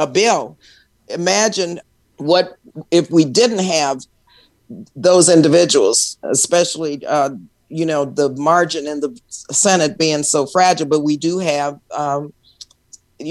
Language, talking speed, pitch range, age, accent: English, 120 wpm, 150-185 Hz, 50-69, American